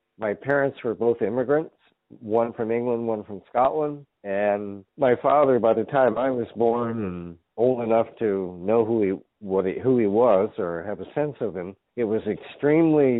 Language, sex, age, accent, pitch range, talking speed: English, male, 50-69, American, 105-135 Hz, 190 wpm